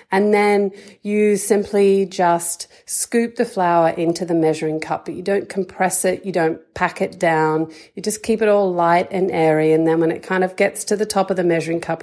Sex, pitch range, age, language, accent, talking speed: female, 165-225 Hz, 40-59, English, Australian, 220 wpm